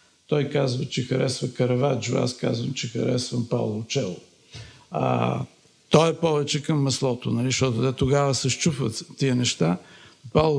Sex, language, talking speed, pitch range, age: male, Bulgarian, 140 wpm, 125-150 Hz, 50-69